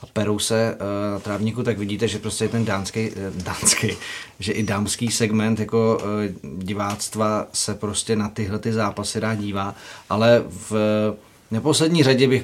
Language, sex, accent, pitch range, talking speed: Czech, male, native, 105-115 Hz, 150 wpm